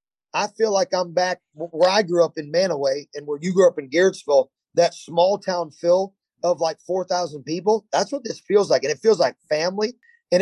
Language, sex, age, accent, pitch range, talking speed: English, male, 30-49, American, 160-190 Hz, 215 wpm